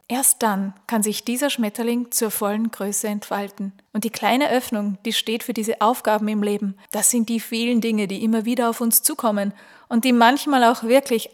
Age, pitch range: 30-49, 215-255 Hz